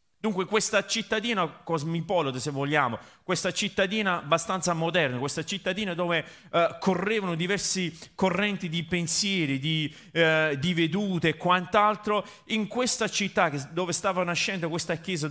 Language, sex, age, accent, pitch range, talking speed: Italian, male, 30-49, native, 165-200 Hz, 120 wpm